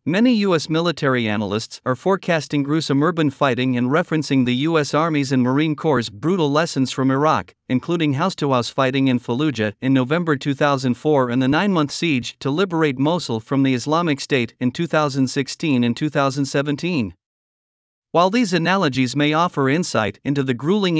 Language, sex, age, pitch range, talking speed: Vietnamese, male, 50-69, 130-165 Hz, 150 wpm